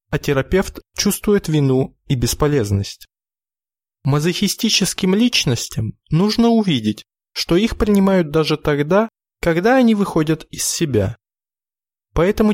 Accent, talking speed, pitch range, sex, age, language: native, 100 wpm, 130-195 Hz, male, 20-39, Russian